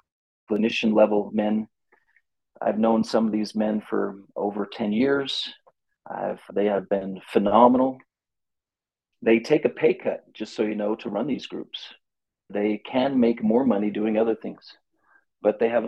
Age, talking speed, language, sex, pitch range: 40-59, 155 wpm, English, male, 100-115 Hz